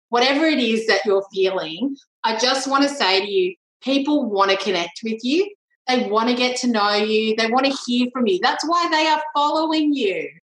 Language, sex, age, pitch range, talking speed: English, female, 30-49, 205-280 Hz, 215 wpm